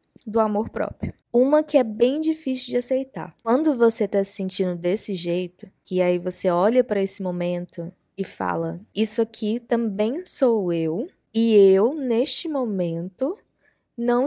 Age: 20-39